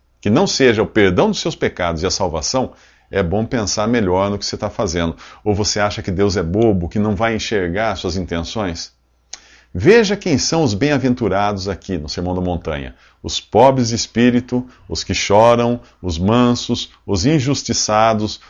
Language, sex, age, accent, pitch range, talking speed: English, male, 50-69, Brazilian, 90-120 Hz, 180 wpm